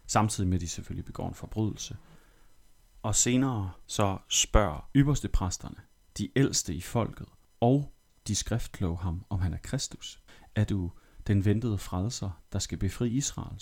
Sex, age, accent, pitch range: male, 30-49, native, 90-115 Hz